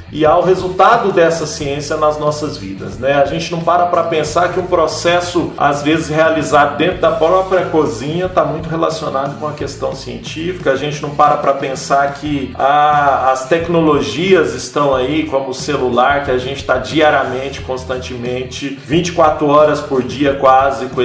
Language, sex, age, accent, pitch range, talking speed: Portuguese, male, 40-59, Brazilian, 135-165 Hz, 170 wpm